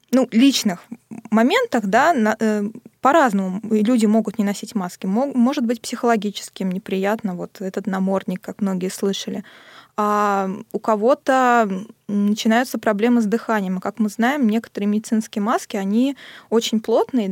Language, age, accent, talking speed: Russian, 20-39, native, 125 wpm